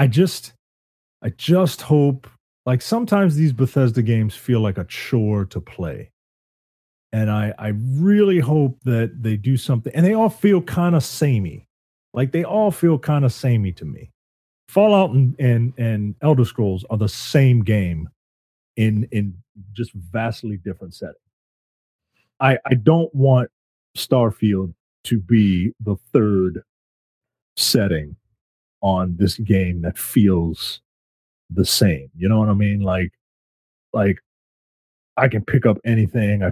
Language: English